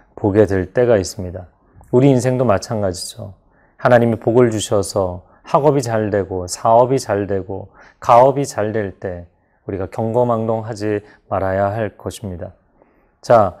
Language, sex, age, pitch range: Korean, male, 30-49, 105-130 Hz